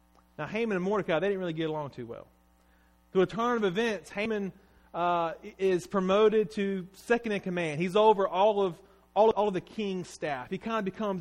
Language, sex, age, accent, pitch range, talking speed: English, male, 30-49, American, 125-200 Hz, 210 wpm